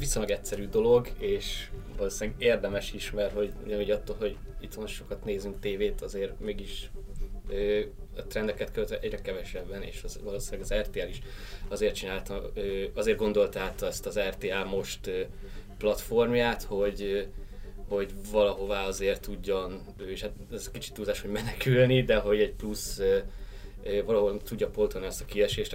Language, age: Hungarian, 20-39